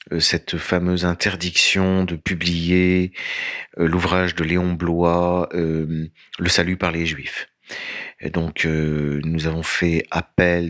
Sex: male